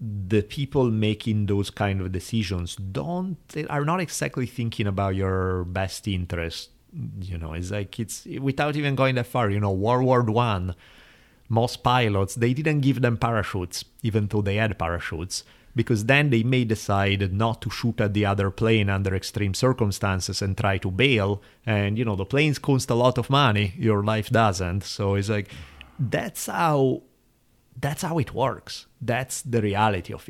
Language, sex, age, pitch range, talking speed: English, male, 30-49, 95-120 Hz, 175 wpm